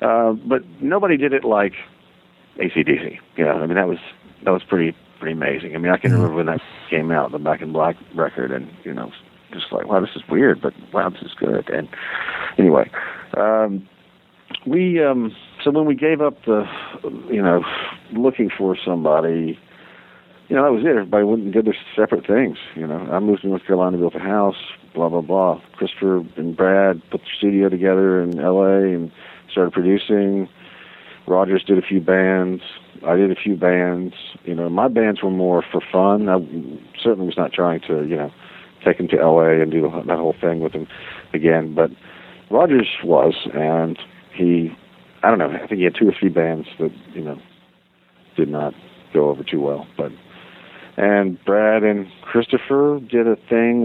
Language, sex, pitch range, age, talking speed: English, male, 85-105 Hz, 50-69, 195 wpm